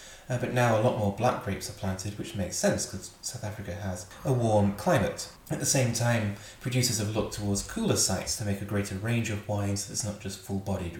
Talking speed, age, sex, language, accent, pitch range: 230 wpm, 20-39, male, English, British, 100-115 Hz